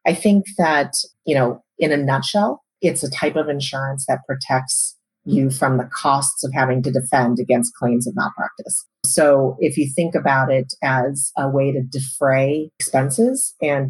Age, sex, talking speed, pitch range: 30-49, female, 175 wpm, 130-145 Hz